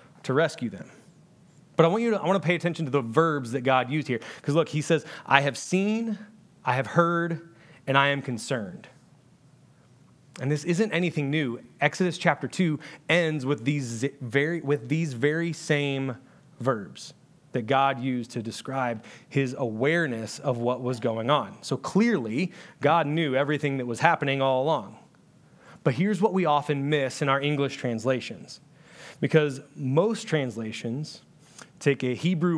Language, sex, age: English, male, 30-49